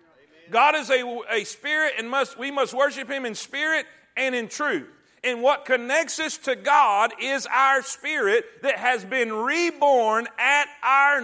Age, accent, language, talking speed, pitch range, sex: 40-59, American, English, 165 wpm, 245-310 Hz, male